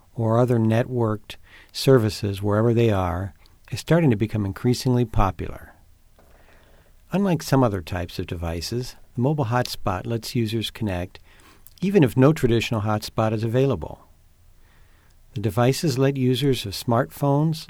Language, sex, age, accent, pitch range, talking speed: English, male, 50-69, American, 100-125 Hz, 130 wpm